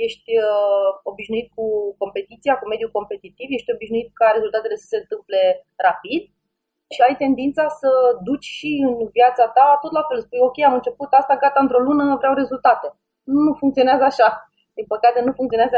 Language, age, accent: Romanian, 20-39, native